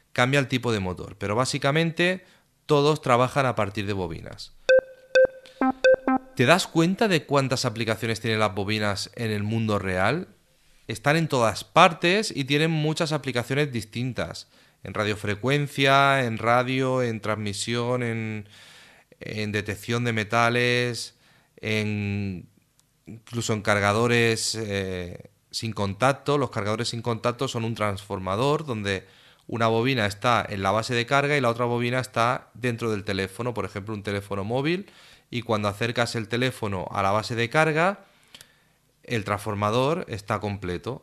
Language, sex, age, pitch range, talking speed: Spanish, male, 30-49, 105-140 Hz, 140 wpm